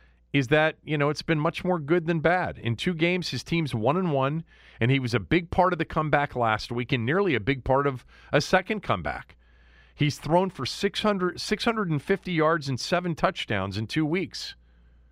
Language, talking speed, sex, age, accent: English, 205 wpm, male, 40-59, American